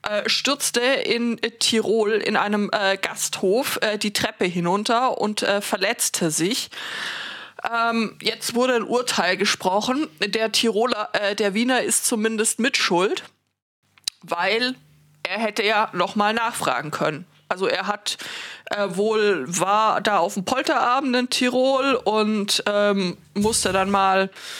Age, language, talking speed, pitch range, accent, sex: 20-39, German, 130 wpm, 200-235 Hz, German, female